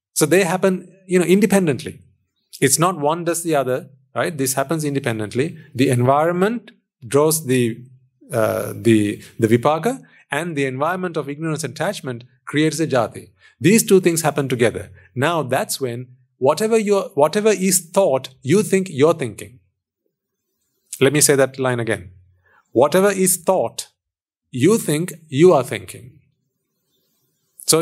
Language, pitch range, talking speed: English, 125-170 Hz, 140 wpm